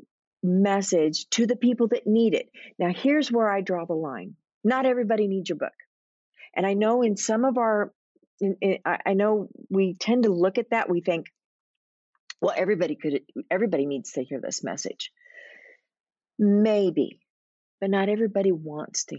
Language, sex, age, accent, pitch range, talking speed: English, female, 50-69, American, 175-230 Hz, 170 wpm